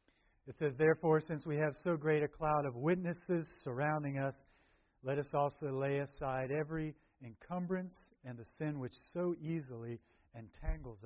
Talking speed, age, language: 150 wpm, 50-69, English